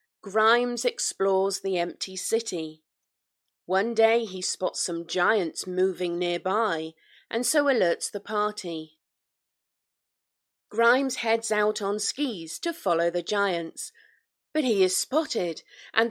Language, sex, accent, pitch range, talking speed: English, female, British, 180-265 Hz, 120 wpm